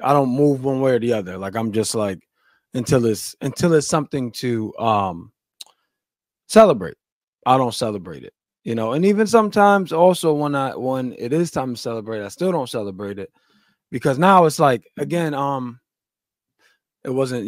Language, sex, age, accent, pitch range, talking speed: English, male, 20-39, American, 115-145 Hz, 175 wpm